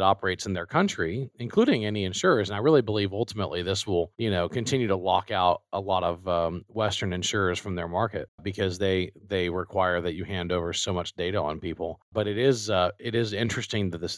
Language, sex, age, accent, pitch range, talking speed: English, male, 40-59, American, 90-110 Hz, 215 wpm